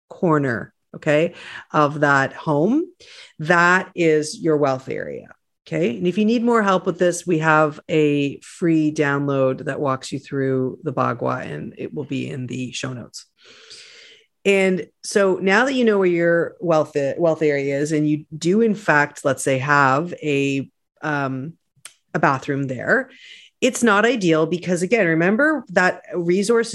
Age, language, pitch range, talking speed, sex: 40-59, English, 150-205 Hz, 160 wpm, female